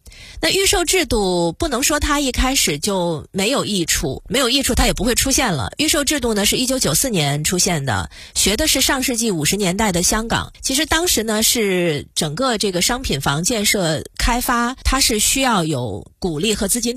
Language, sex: Chinese, female